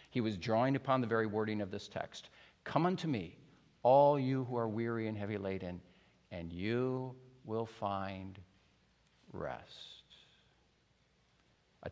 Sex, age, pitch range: male, 50-69, 115-160 Hz